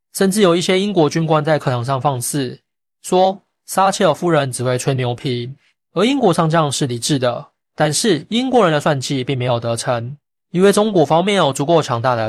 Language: Chinese